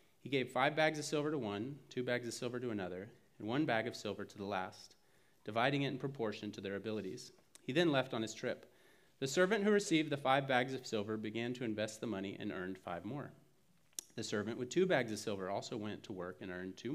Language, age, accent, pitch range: English, 30-49, American, 110-140 Hz